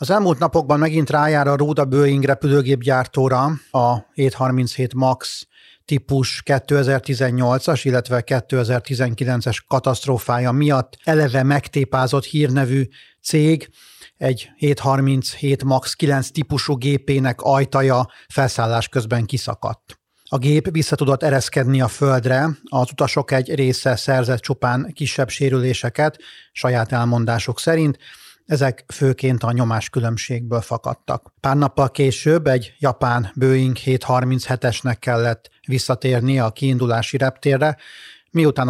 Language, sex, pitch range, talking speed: Hungarian, male, 125-140 Hz, 105 wpm